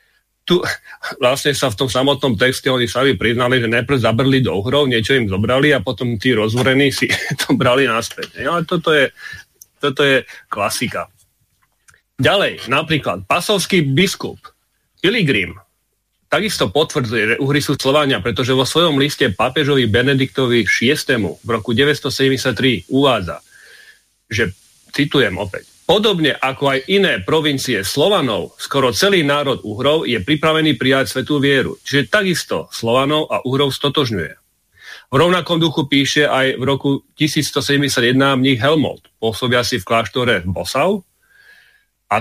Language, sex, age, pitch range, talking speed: Slovak, male, 40-59, 125-150 Hz, 130 wpm